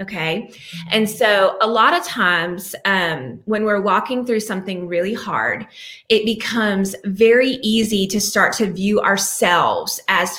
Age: 20-39